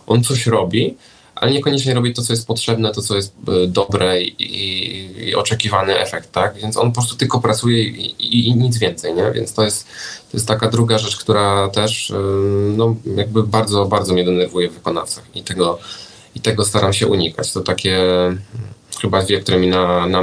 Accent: native